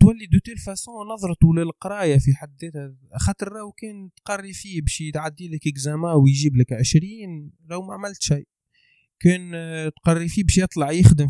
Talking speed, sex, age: 150 wpm, male, 20-39